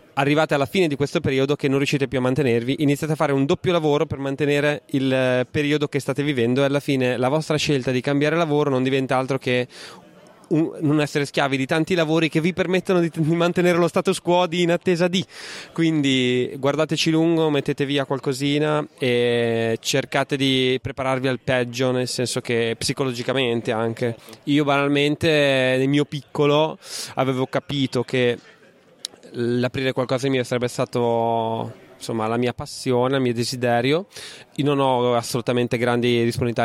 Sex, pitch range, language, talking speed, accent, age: male, 125-150 Hz, Italian, 165 wpm, native, 20-39